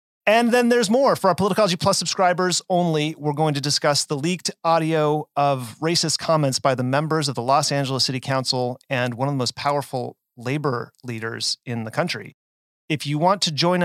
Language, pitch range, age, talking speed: English, 120-150 Hz, 30-49, 195 wpm